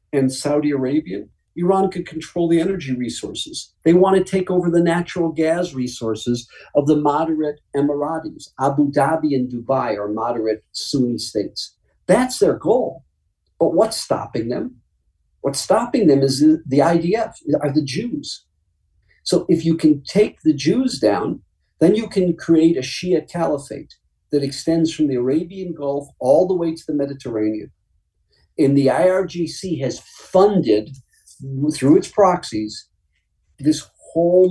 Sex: male